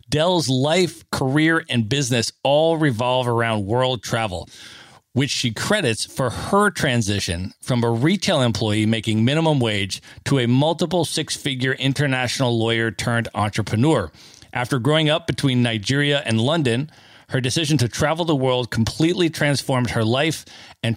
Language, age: English, 40-59